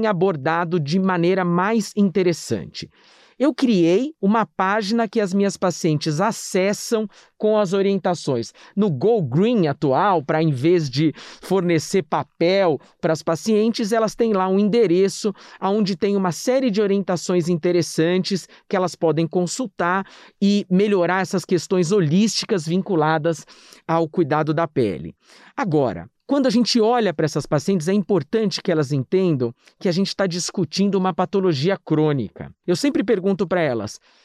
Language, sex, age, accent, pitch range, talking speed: Portuguese, male, 50-69, Brazilian, 160-210 Hz, 145 wpm